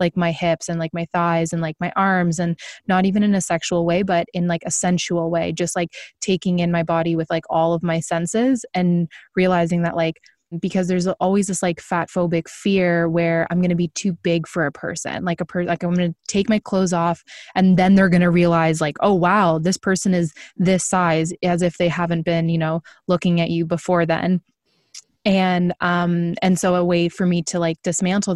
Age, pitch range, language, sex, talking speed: 20-39, 170-185 Hz, English, female, 220 wpm